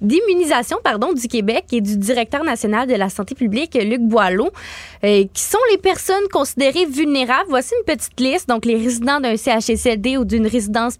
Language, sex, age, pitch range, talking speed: French, female, 20-39, 220-270 Hz, 180 wpm